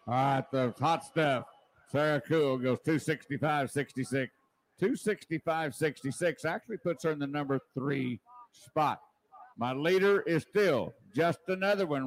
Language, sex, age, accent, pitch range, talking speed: English, male, 60-79, American, 145-185 Hz, 125 wpm